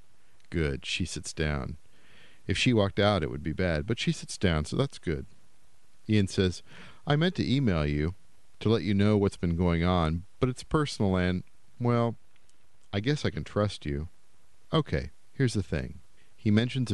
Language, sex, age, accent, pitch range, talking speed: English, male, 50-69, American, 80-105 Hz, 180 wpm